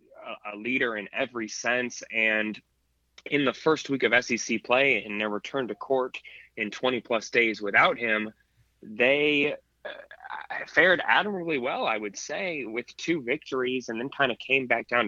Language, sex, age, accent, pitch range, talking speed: English, male, 20-39, American, 105-125 Hz, 165 wpm